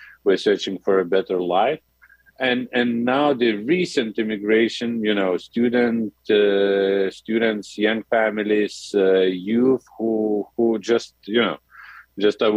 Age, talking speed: 40-59, 135 wpm